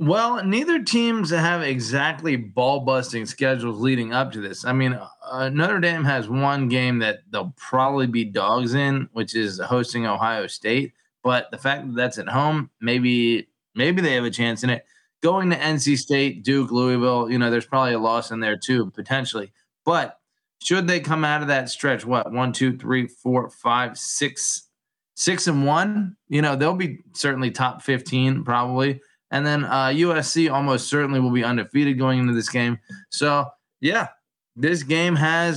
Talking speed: 180 wpm